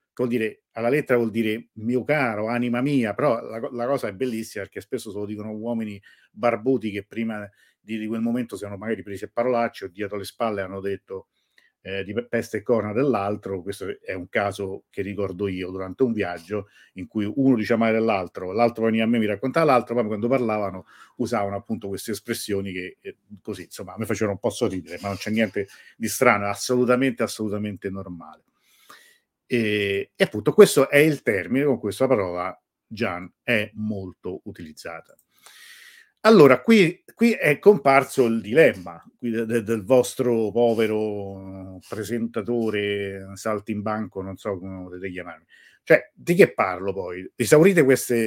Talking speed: 170 wpm